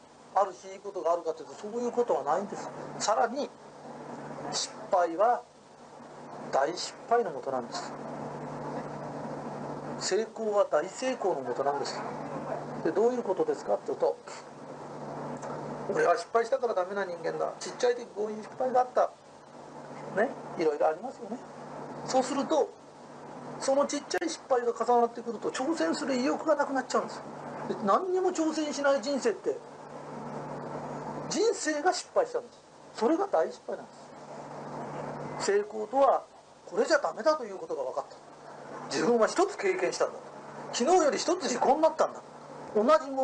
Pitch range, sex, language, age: 235-320 Hz, male, Japanese, 40-59